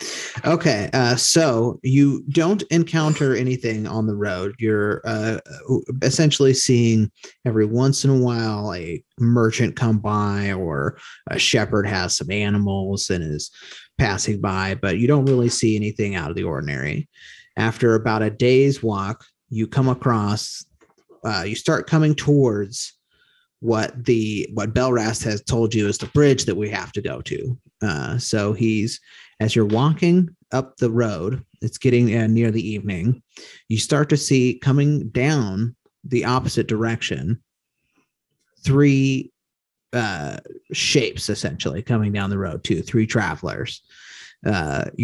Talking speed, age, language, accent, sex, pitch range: 145 wpm, 30-49, English, American, male, 105-130 Hz